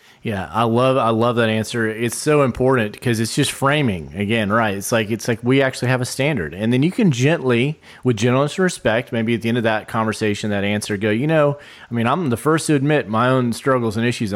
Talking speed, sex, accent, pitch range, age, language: 240 wpm, male, American, 110-135 Hz, 30-49, English